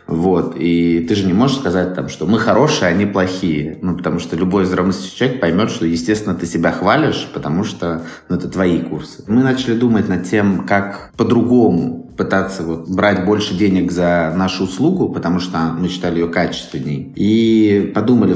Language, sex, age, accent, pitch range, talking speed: Russian, male, 20-39, native, 85-110 Hz, 185 wpm